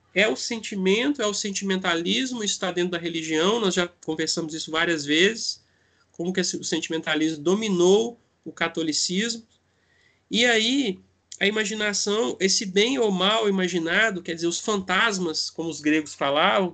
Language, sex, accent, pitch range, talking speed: Portuguese, male, Brazilian, 155-195 Hz, 145 wpm